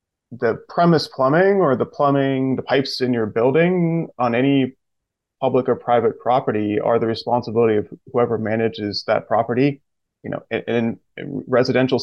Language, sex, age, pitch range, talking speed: English, male, 30-49, 115-140 Hz, 150 wpm